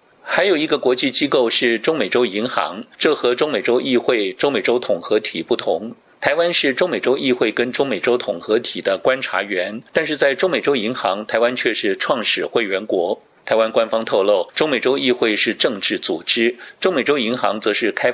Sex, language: male, Chinese